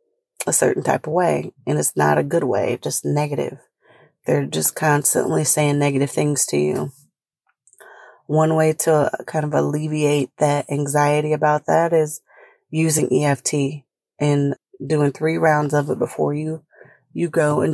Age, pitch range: 30-49, 140-160 Hz